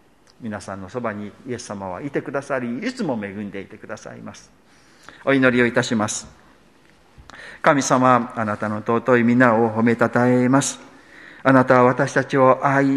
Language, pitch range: Japanese, 120-140 Hz